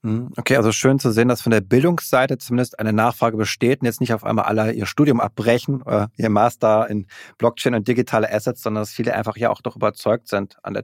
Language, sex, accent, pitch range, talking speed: German, male, German, 115-140 Hz, 225 wpm